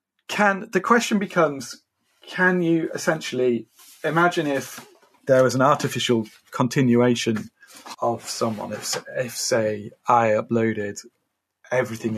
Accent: British